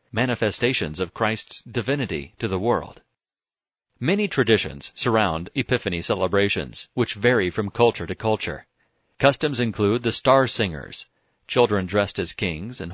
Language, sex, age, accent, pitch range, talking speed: English, male, 40-59, American, 95-120 Hz, 130 wpm